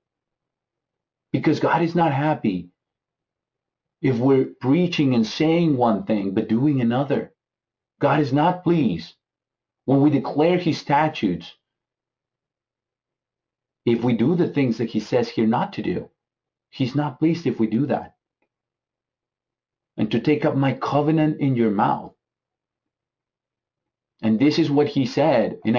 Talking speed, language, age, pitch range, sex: 135 wpm, English, 40-59, 125-160 Hz, male